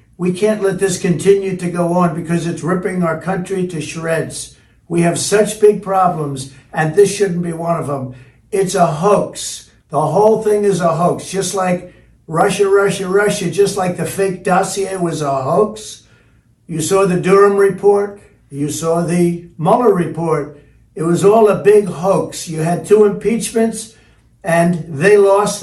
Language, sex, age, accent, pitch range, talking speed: English, male, 60-79, American, 165-205 Hz, 170 wpm